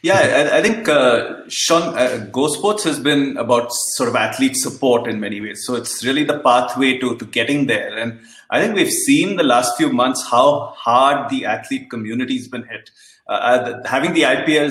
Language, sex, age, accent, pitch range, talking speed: English, male, 30-49, Indian, 125-170 Hz, 200 wpm